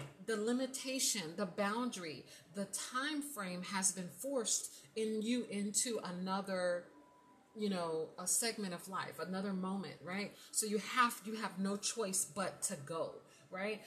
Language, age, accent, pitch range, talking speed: English, 30-49, American, 190-240 Hz, 145 wpm